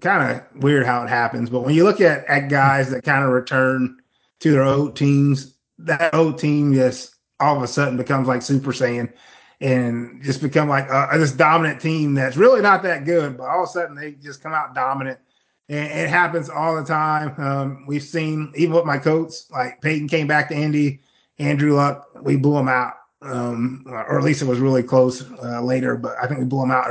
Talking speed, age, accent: 220 wpm, 20-39, American